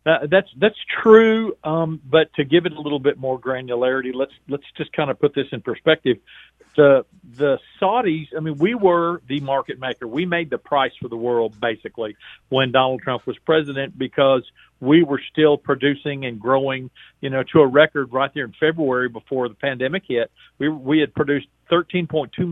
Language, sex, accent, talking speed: English, male, American, 190 wpm